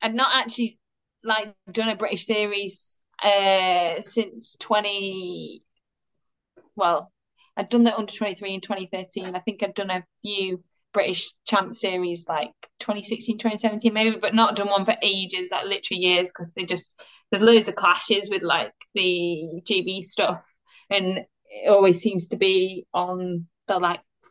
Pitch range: 180-215 Hz